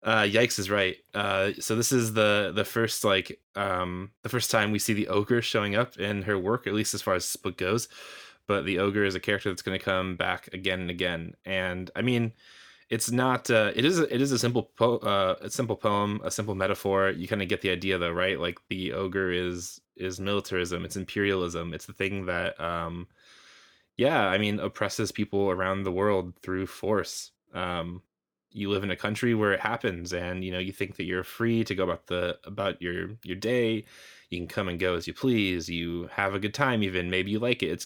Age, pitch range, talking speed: 20-39, 90-105 Hz, 225 wpm